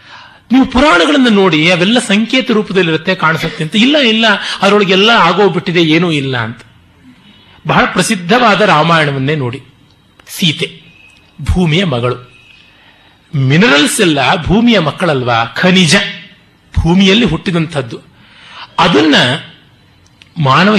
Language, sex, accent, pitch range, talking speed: Kannada, male, native, 150-225 Hz, 90 wpm